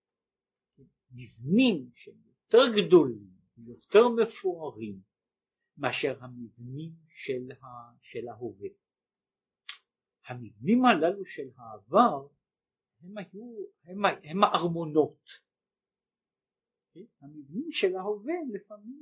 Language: Hebrew